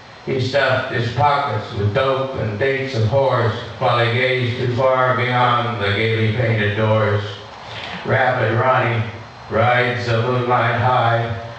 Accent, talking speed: American, 130 wpm